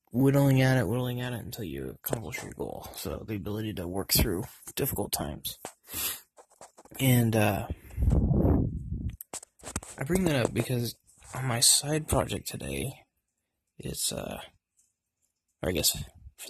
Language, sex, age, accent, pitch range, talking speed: English, male, 20-39, American, 110-135 Hz, 135 wpm